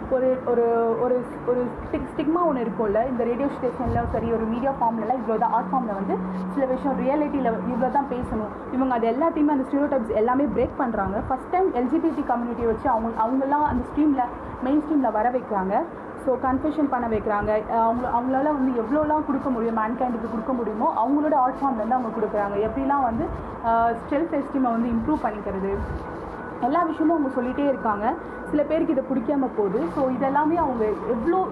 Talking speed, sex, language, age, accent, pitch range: 170 wpm, female, Tamil, 20-39, native, 230-290 Hz